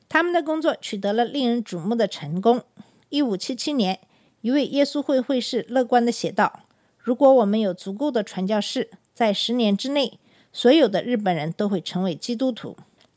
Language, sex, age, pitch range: Chinese, female, 50-69, 200-265 Hz